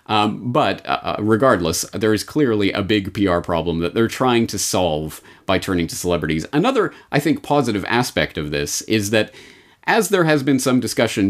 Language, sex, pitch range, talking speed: English, male, 85-110 Hz, 185 wpm